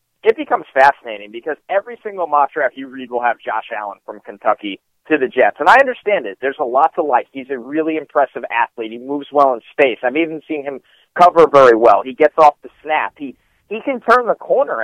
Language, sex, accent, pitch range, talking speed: English, male, American, 130-170 Hz, 225 wpm